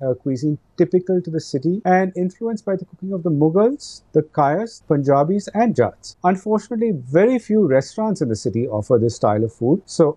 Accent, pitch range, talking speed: Indian, 130-180 Hz, 190 wpm